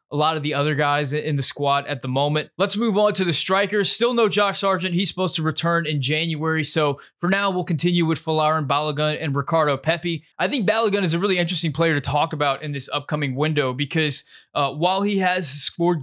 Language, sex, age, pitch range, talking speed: English, male, 20-39, 145-175 Hz, 225 wpm